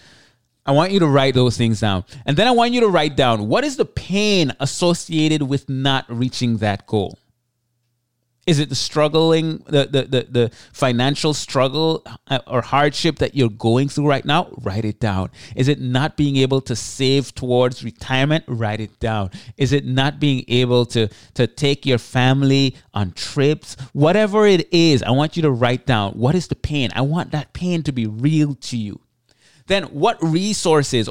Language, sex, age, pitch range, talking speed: English, male, 30-49, 120-160 Hz, 185 wpm